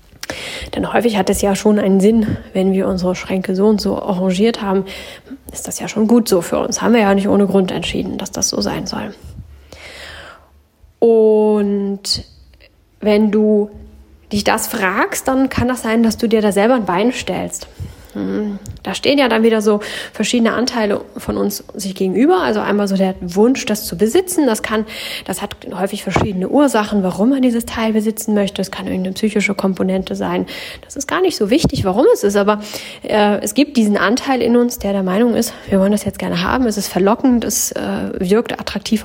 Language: German